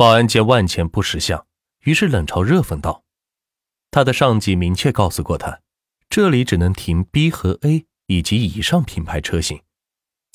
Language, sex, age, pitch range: Chinese, male, 30-49, 85-135 Hz